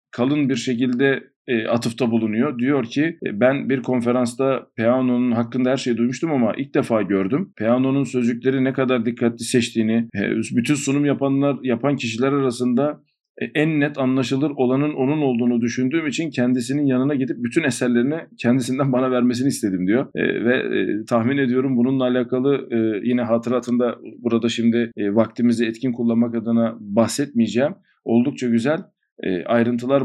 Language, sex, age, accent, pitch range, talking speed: Turkish, male, 50-69, native, 120-135 Hz, 135 wpm